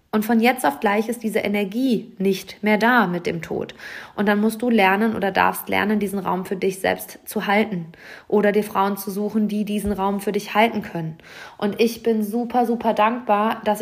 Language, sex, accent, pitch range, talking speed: German, female, German, 185-230 Hz, 210 wpm